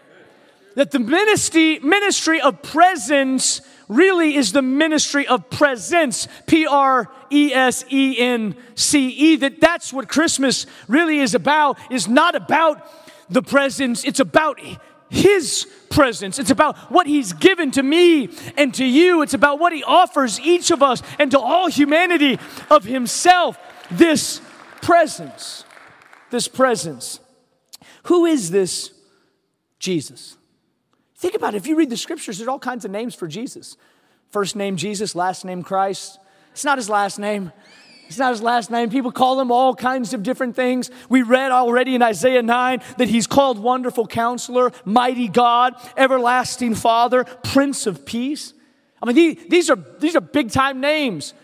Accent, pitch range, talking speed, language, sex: American, 240-300 Hz, 155 wpm, English, male